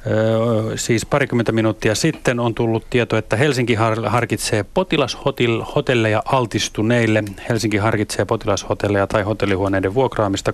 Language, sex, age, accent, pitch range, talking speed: Finnish, male, 30-49, native, 95-115 Hz, 105 wpm